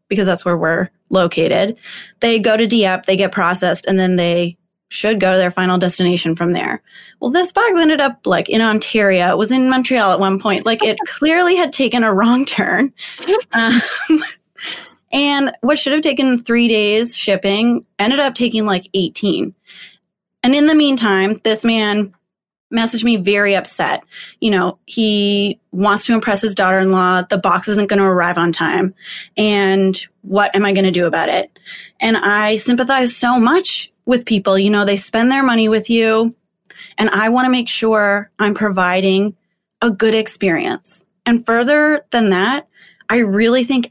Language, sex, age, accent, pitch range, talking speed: English, female, 20-39, American, 195-245 Hz, 175 wpm